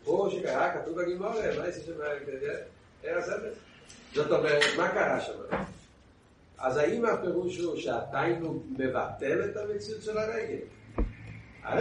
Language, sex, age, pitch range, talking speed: Hebrew, male, 60-79, 175-250 Hz, 110 wpm